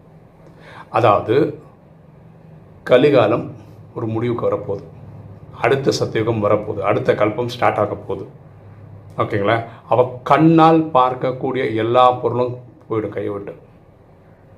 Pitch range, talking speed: 120-150 Hz, 90 wpm